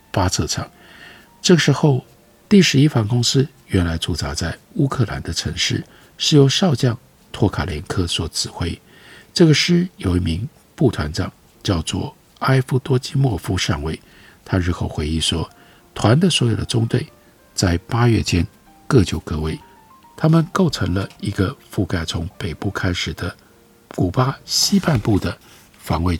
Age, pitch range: 50-69, 90-145 Hz